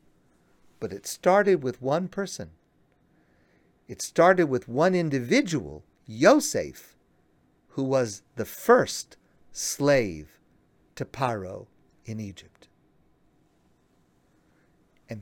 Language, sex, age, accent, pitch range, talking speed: English, male, 50-69, American, 130-195 Hz, 85 wpm